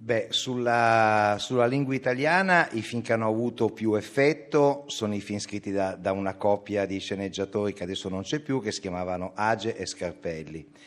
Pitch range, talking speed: 100-120 Hz, 180 wpm